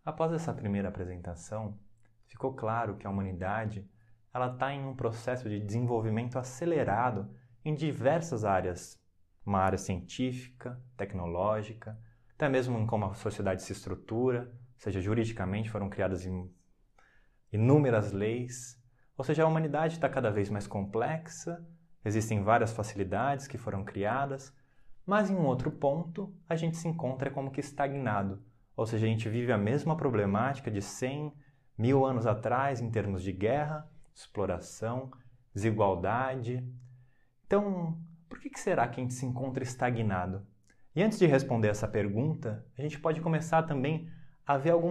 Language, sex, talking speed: Portuguese, male, 145 wpm